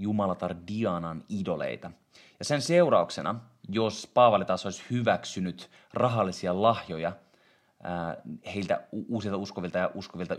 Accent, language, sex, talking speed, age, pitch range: native, Finnish, male, 105 wpm, 30-49, 90-110 Hz